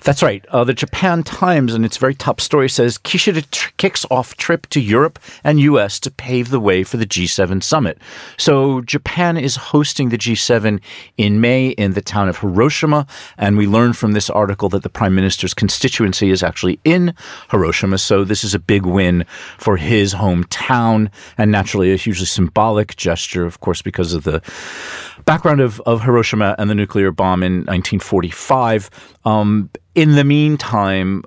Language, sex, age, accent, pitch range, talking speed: English, male, 40-59, American, 95-120 Hz, 175 wpm